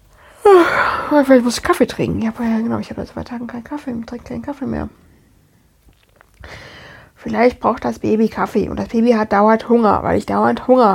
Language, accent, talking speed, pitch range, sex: German, German, 205 wpm, 220-280 Hz, female